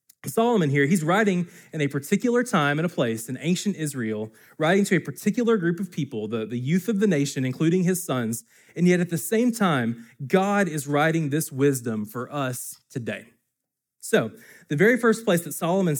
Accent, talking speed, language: American, 190 wpm, English